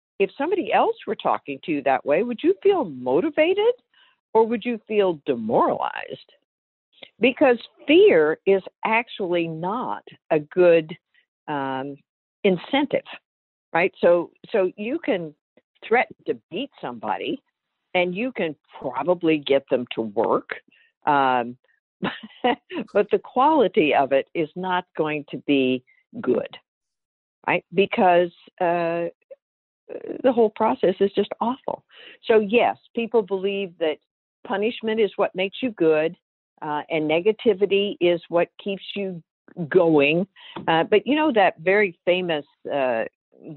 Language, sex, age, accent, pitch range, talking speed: English, female, 60-79, American, 170-265 Hz, 125 wpm